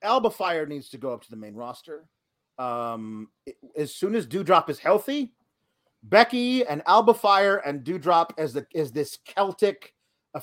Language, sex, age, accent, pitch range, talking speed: English, male, 30-49, American, 155-205 Hz, 165 wpm